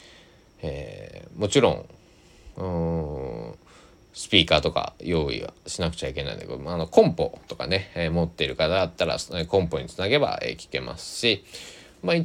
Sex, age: male, 20-39